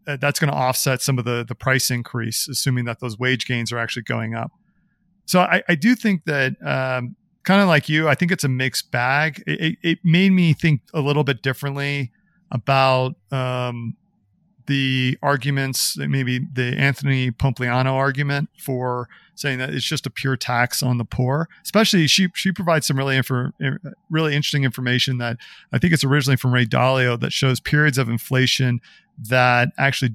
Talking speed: 180 wpm